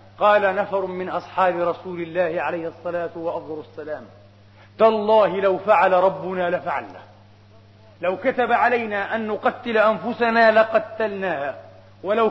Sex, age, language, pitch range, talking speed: male, 40-59, Arabic, 165-235 Hz, 110 wpm